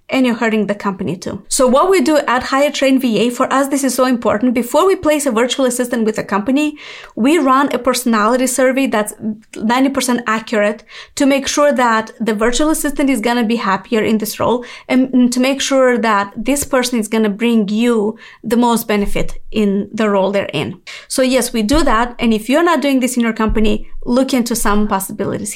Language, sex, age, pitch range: English, female, 30-49, 220-280 Hz